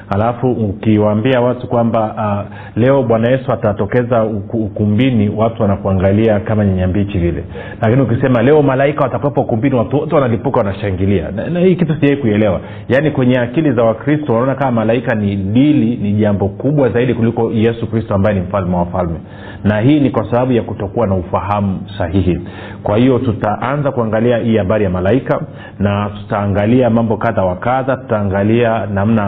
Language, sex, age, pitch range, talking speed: Swahili, male, 40-59, 100-120 Hz, 160 wpm